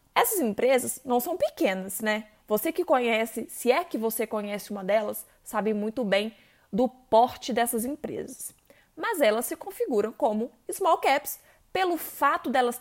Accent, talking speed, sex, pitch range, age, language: Brazilian, 155 wpm, female, 225-290 Hz, 20-39, Portuguese